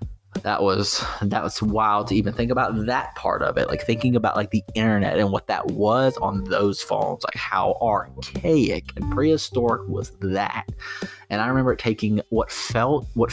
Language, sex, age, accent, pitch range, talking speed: English, male, 30-49, American, 95-110 Hz, 180 wpm